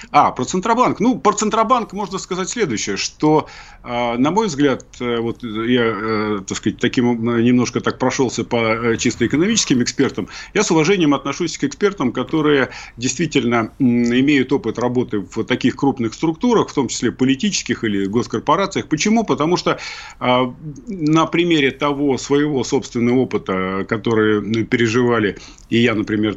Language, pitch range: Russian, 115-155 Hz